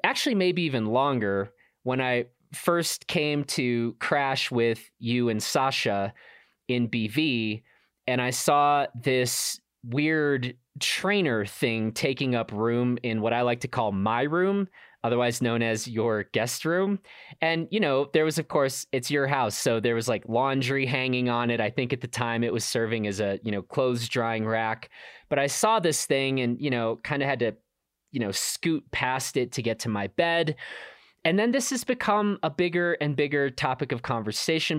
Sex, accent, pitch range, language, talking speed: male, American, 120-160 Hz, English, 185 wpm